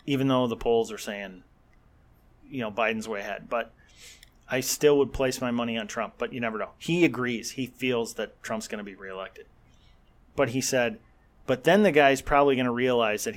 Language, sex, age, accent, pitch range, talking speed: English, male, 30-49, American, 120-165 Hz, 205 wpm